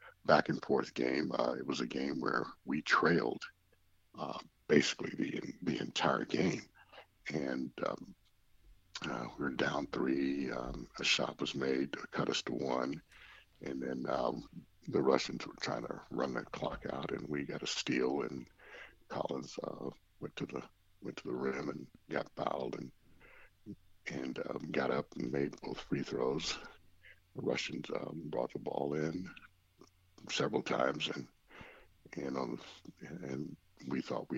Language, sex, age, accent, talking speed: English, male, 60-79, American, 160 wpm